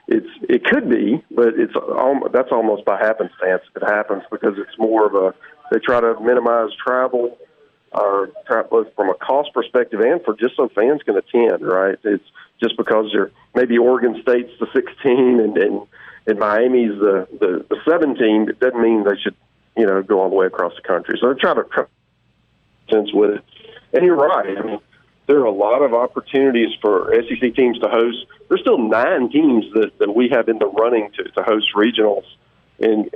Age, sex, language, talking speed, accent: 40-59, male, English, 195 wpm, American